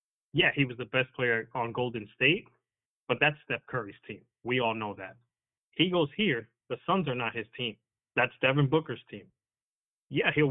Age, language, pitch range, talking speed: 30-49, English, 115-140 Hz, 190 wpm